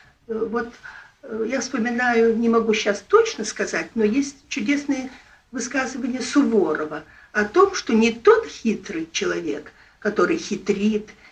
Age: 50-69